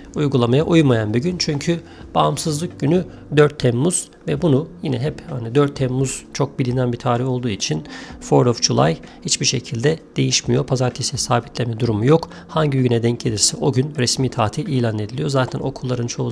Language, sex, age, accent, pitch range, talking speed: Turkish, male, 40-59, native, 115-140 Hz, 165 wpm